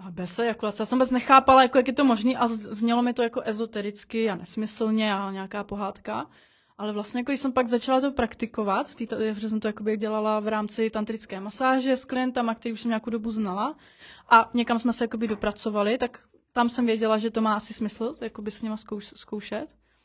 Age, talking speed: 20-39, 205 wpm